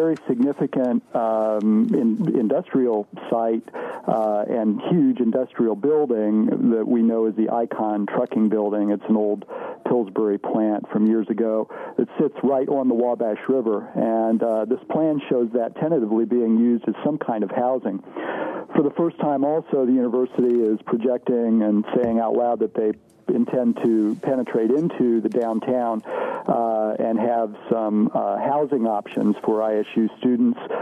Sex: male